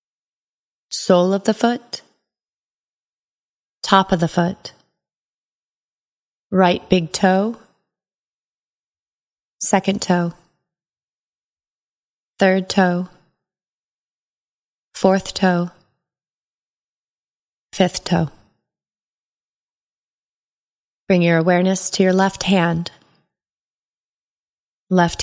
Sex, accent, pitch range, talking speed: female, American, 170-195 Hz, 65 wpm